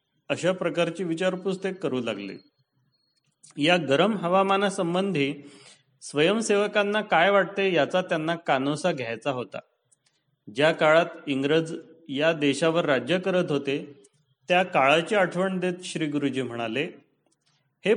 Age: 40-59